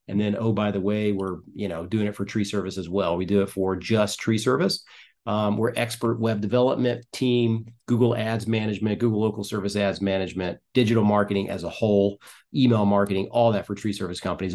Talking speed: 205 wpm